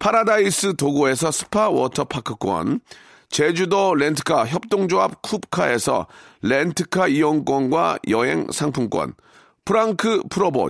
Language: Korean